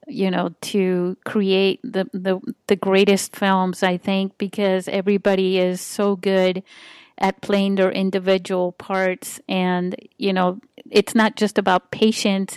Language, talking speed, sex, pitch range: English, 140 wpm, female, 185-220 Hz